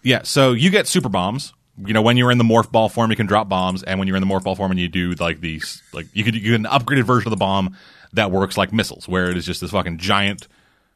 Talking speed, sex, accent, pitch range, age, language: 295 wpm, male, American, 110-140 Hz, 30-49, English